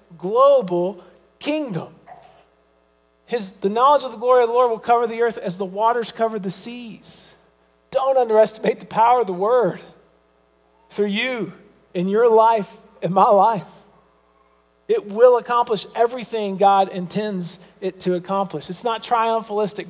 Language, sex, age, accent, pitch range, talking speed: English, male, 40-59, American, 180-220 Hz, 145 wpm